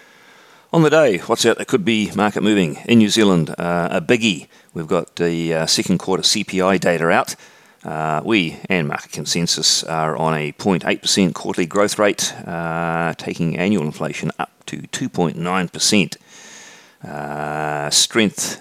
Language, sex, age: English, male, 40-59